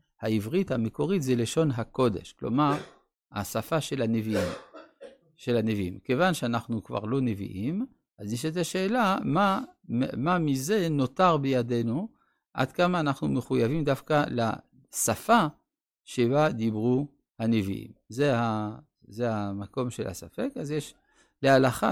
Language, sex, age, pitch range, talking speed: Hebrew, male, 50-69, 110-145 Hz, 120 wpm